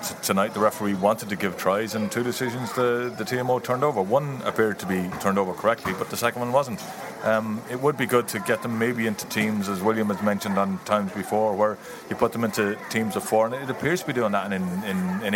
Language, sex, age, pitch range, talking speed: English, male, 30-49, 100-125 Hz, 245 wpm